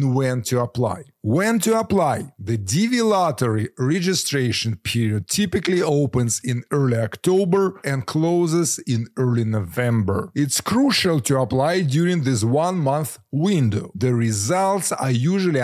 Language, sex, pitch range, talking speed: English, male, 115-170 Hz, 130 wpm